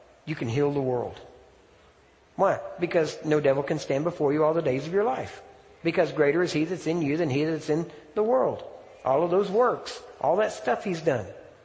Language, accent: English, American